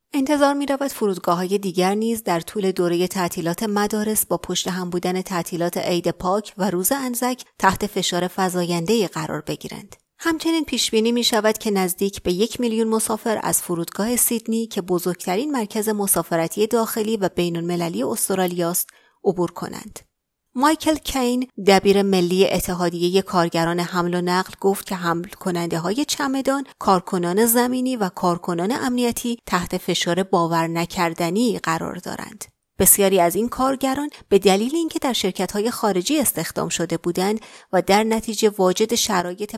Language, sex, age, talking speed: Persian, female, 30-49, 145 wpm